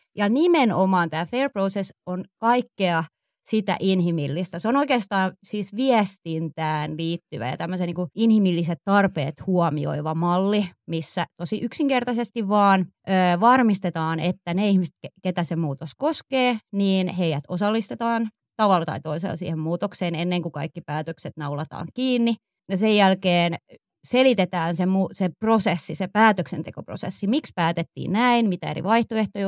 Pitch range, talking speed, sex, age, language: 165-200 Hz, 130 wpm, female, 20-39, Finnish